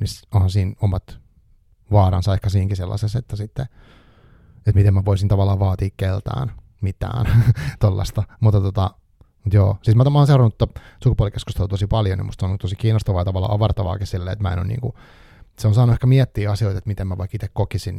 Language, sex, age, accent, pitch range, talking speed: Finnish, male, 30-49, native, 100-115 Hz, 185 wpm